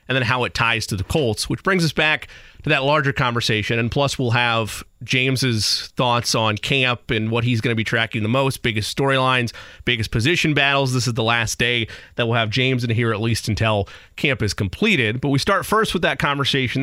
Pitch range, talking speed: 110-140 Hz, 220 wpm